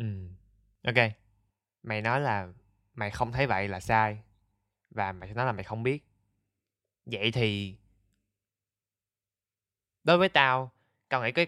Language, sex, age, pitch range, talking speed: Vietnamese, male, 20-39, 100-125 Hz, 140 wpm